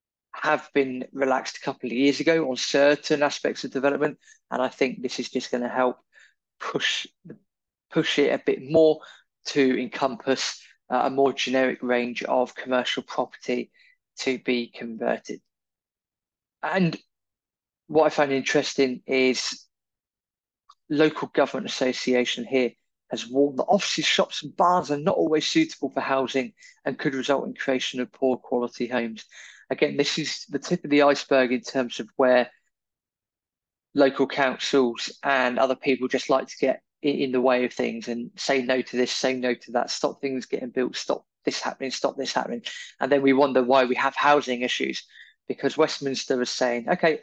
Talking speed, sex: 165 wpm, male